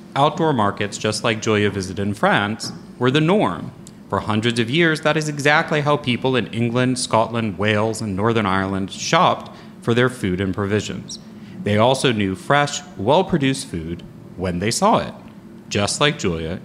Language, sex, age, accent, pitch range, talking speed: English, male, 30-49, American, 105-150 Hz, 165 wpm